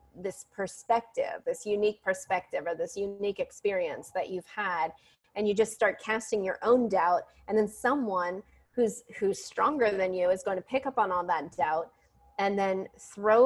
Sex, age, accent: female, 30-49, American